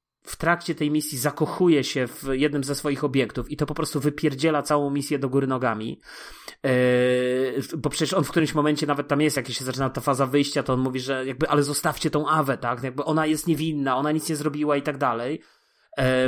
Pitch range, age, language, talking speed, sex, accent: 135-165 Hz, 30-49, Polish, 210 wpm, male, native